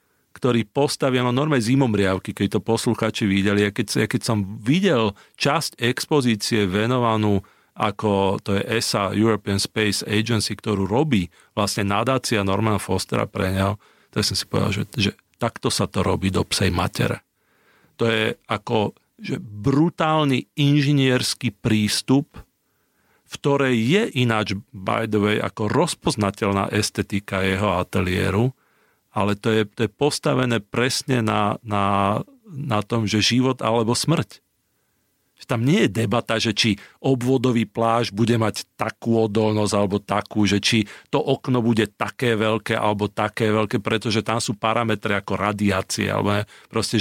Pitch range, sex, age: 105-125 Hz, male, 40-59